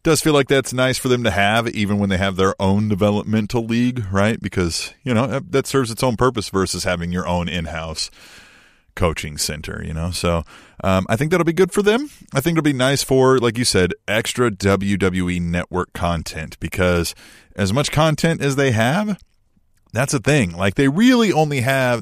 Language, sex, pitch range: English, male, 95-125 Hz